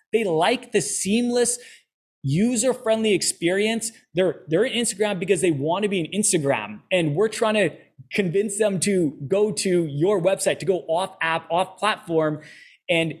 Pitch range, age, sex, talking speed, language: 160-205 Hz, 20-39, male, 155 wpm, English